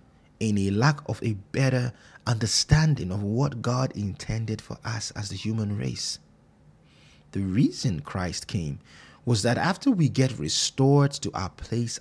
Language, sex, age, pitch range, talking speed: English, male, 30-49, 105-135 Hz, 150 wpm